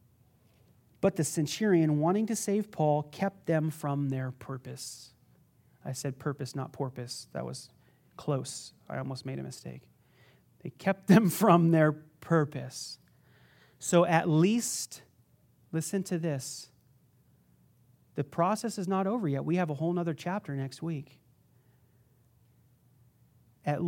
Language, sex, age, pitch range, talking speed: English, male, 30-49, 135-175 Hz, 130 wpm